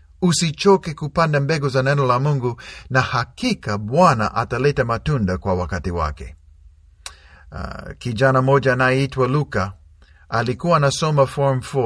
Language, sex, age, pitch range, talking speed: Swahili, male, 50-69, 95-155 Hz, 120 wpm